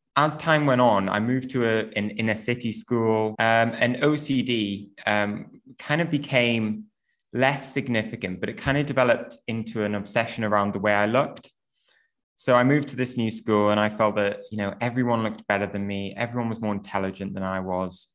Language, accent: English, British